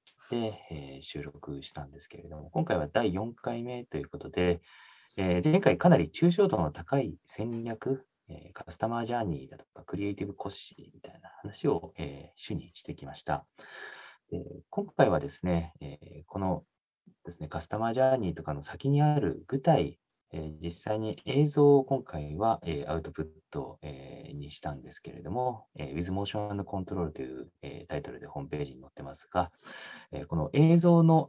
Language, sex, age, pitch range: English, male, 30-49, 85-140 Hz